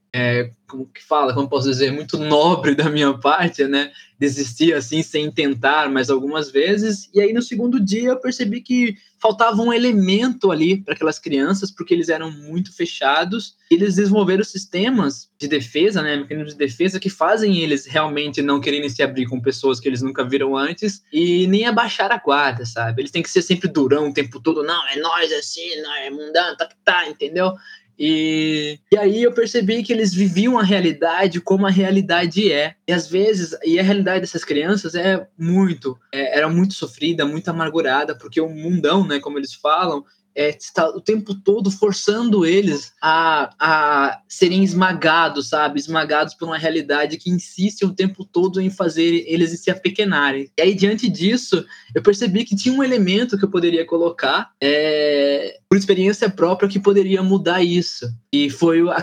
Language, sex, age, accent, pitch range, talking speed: Portuguese, male, 20-39, Brazilian, 145-195 Hz, 180 wpm